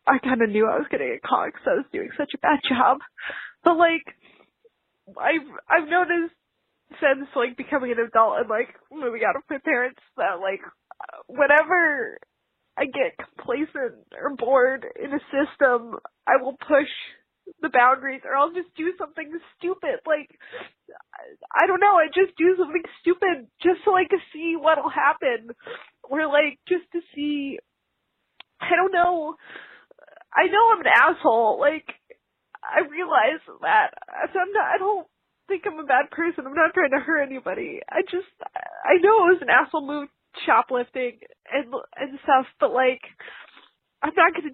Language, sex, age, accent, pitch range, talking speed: English, female, 20-39, American, 280-365 Hz, 165 wpm